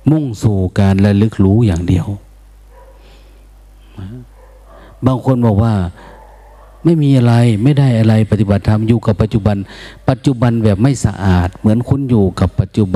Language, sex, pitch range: Thai, male, 95-115 Hz